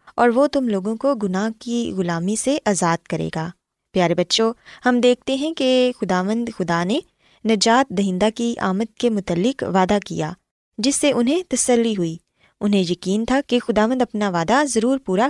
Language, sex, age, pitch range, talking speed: Urdu, female, 20-39, 185-250 Hz, 170 wpm